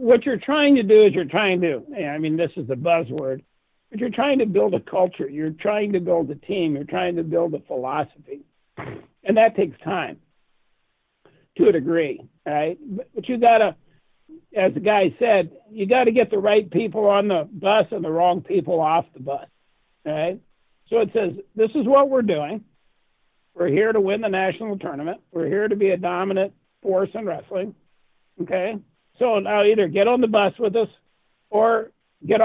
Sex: male